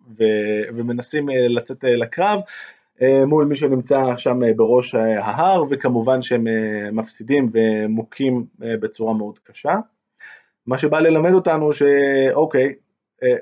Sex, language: male, Hebrew